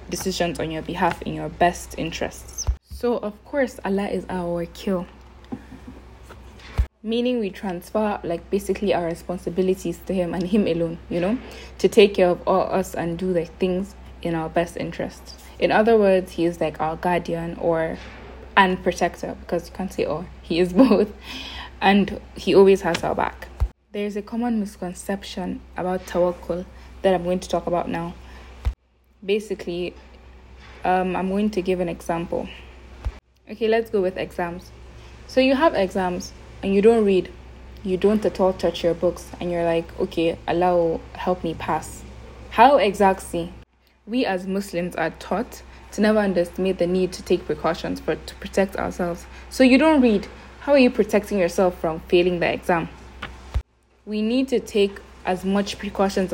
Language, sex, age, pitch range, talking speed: English, female, 10-29, 170-200 Hz, 170 wpm